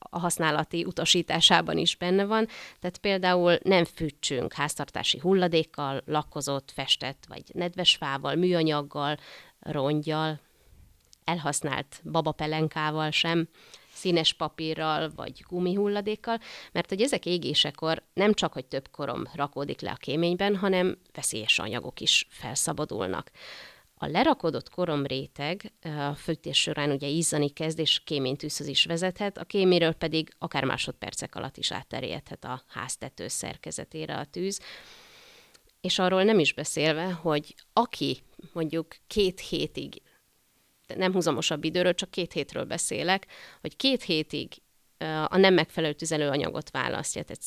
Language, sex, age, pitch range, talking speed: Hungarian, female, 30-49, 150-180 Hz, 125 wpm